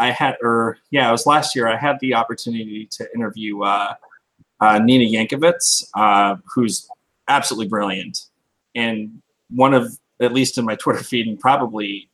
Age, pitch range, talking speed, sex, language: 30-49, 105-125 Hz, 165 wpm, male, English